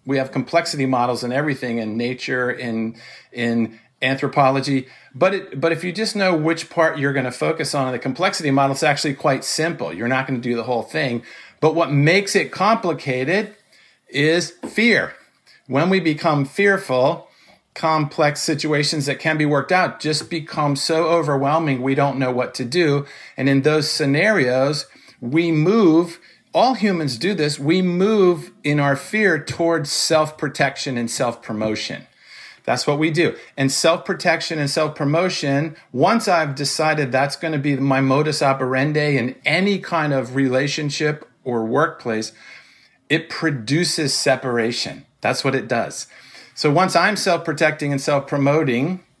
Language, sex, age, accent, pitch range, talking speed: English, male, 50-69, American, 130-165 Hz, 155 wpm